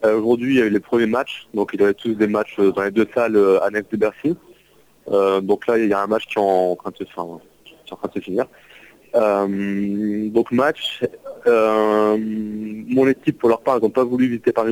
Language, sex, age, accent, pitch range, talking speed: French, male, 30-49, French, 100-115 Hz, 230 wpm